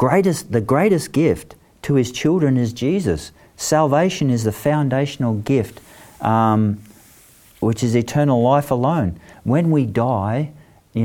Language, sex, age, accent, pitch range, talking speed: English, male, 50-69, Australian, 100-140 Hz, 130 wpm